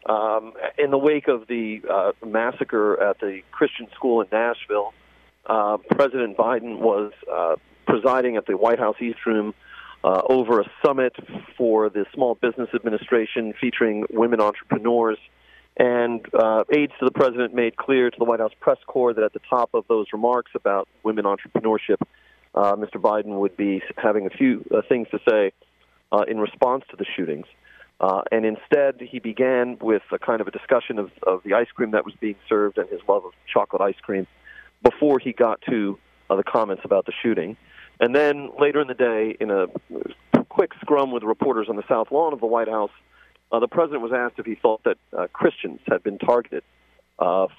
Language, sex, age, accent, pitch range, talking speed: English, male, 40-59, American, 110-135 Hz, 190 wpm